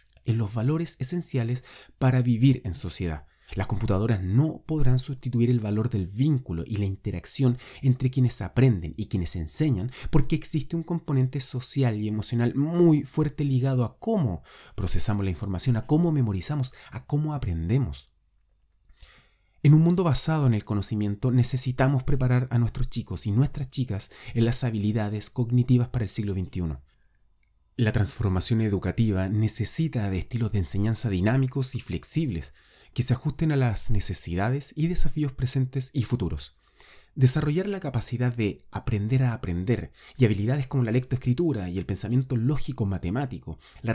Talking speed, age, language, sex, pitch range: 150 wpm, 30-49, Spanish, male, 100-135 Hz